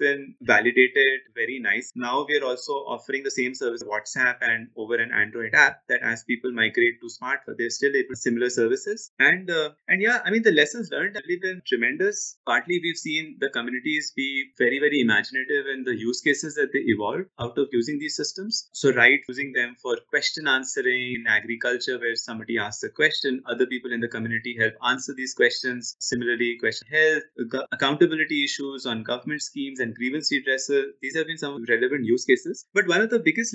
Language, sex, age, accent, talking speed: English, male, 30-49, Indian, 195 wpm